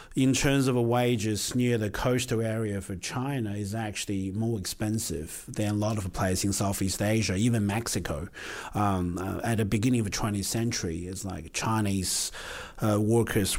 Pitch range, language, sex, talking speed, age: 95-115 Hz, English, male, 165 wpm, 30-49